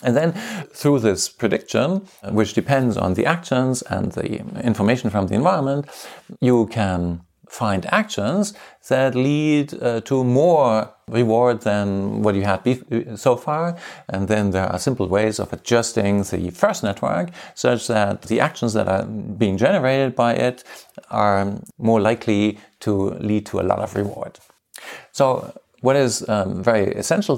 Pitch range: 105-135 Hz